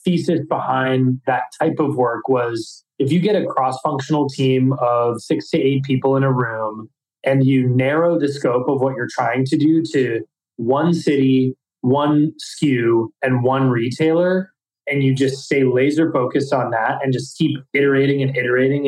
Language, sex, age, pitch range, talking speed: English, male, 20-39, 130-150 Hz, 175 wpm